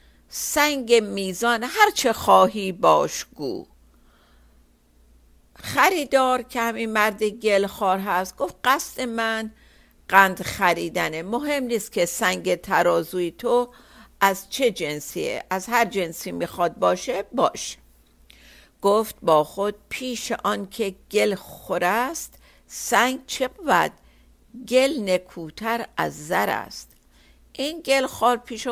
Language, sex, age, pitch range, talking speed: Persian, female, 50-69, 175-235 Hz, 110 wpm